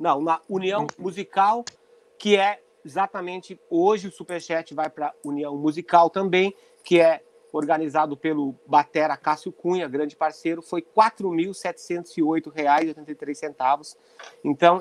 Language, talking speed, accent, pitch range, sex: Portuguese, 120 wpm, Brazilian, 155-190 Hz, male